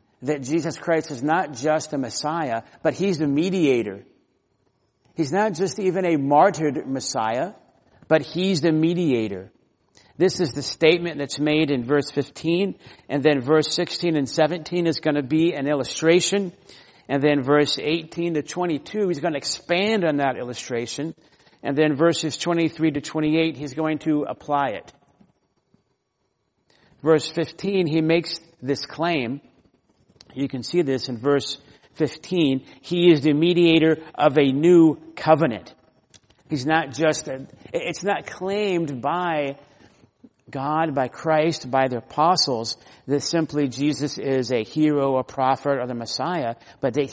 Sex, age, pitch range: male, 50-69, 140-170 Hz